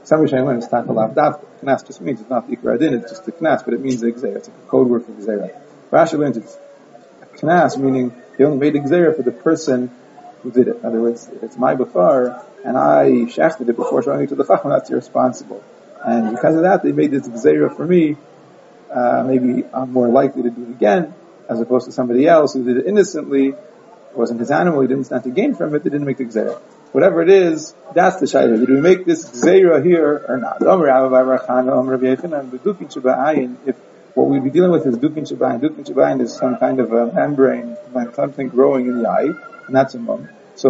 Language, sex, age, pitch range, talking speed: English, male, 30-49, 125-150 Hz, 210 wpm